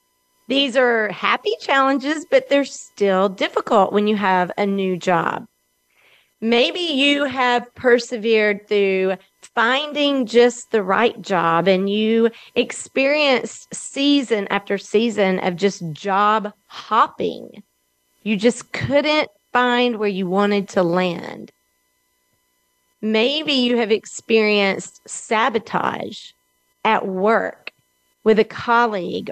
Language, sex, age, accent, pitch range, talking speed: English, female, 40-59, American, 200-260 Hz, 110 wpm